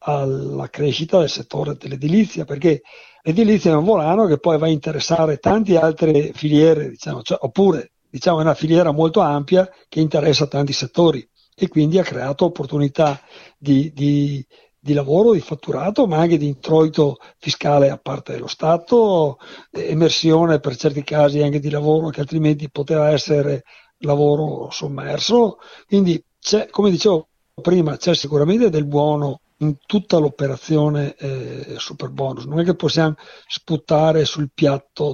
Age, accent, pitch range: 60-79, native, 145-175 Hz